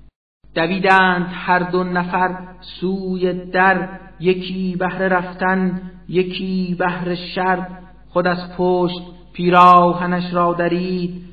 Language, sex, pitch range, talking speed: Persian, male, 180-195 Hz, 95 wpm